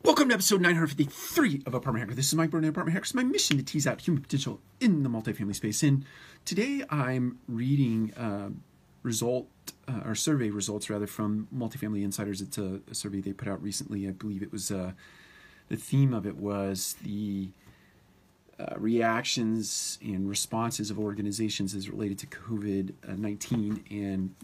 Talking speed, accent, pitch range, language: 170 wpm, American, 100-125 Hz, English